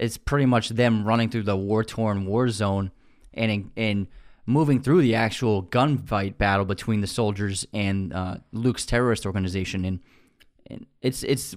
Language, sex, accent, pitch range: English, male, American, 100-120 Hz